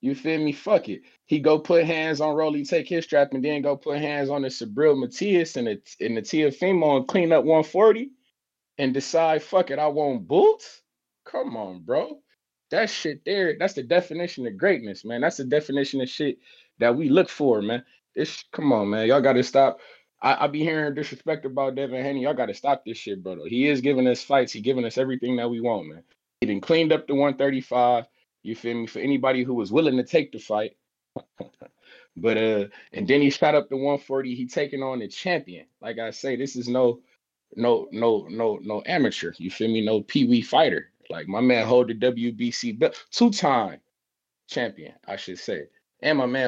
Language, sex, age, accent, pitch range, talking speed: English, male, 20-39, American, 125-155 Hz, 205 wpm